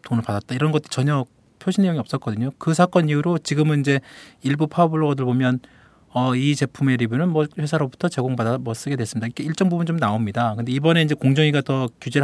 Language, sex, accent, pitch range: Korean, male, native, 125-160 Hz